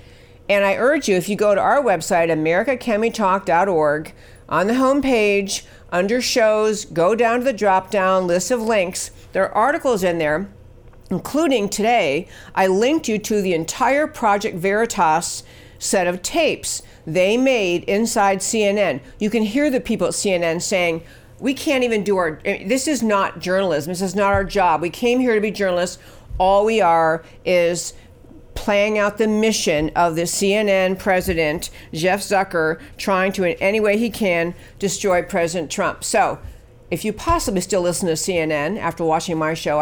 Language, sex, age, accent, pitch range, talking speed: English, female, 50-69, American, 165-210 Hz, 165 wpm